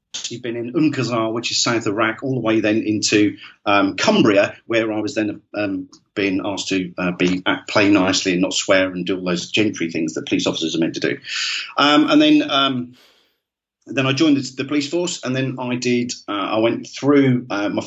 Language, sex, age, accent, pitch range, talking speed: English, male, 40-59, British, 110-145 Hz, 220 wpm